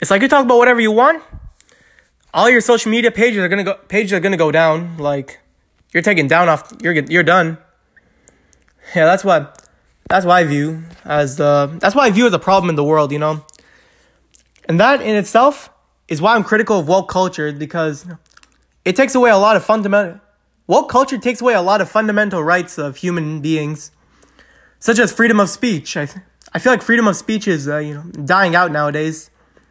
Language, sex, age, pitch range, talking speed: English, male, 20-39, 160-225 Hz, 205 wpm